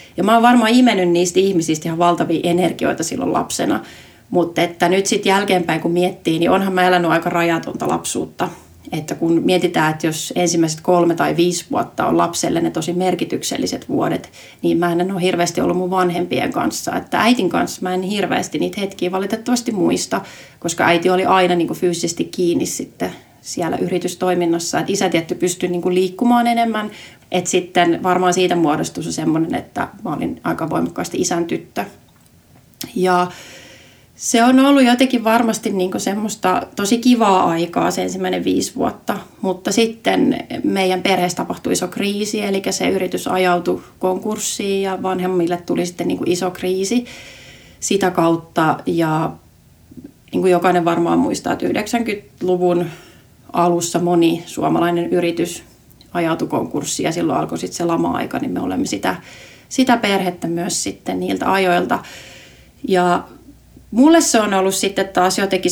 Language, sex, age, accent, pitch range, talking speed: Finnish, female, 30-49, native, 170-195 Hz, 150 wpm